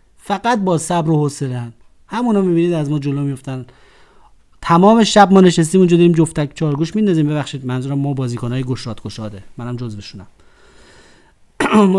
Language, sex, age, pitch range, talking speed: Persian, male, 30-49, 135-180 Hz, 155 wpm